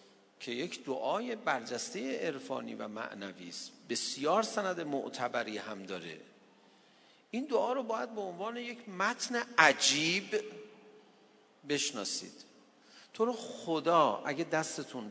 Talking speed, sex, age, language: 105 wpm, male, 50-69, Persian